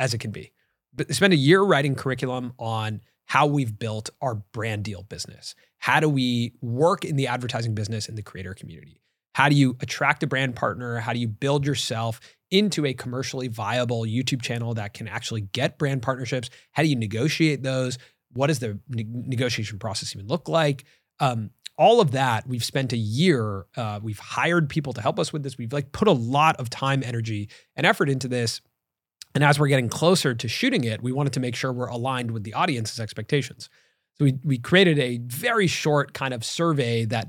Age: 30-49